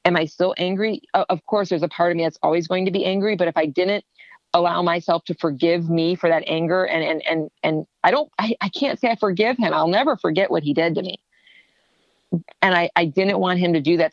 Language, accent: English, American